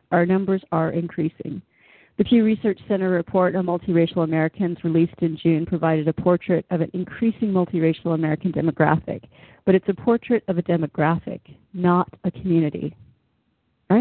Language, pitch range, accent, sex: English, 165-205 Hz, American, female